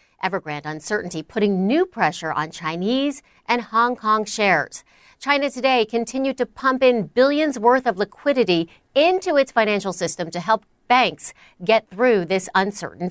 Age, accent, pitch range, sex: 40-59, American, 190-255 Hz, female